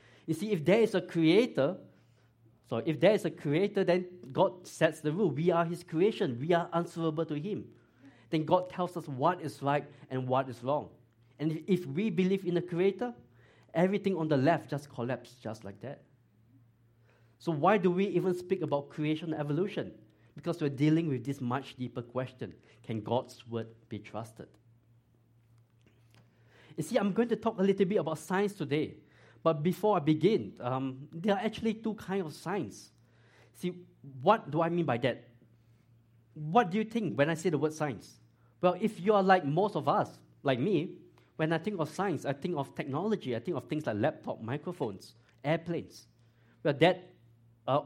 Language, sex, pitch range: English, male, 120-175 Hz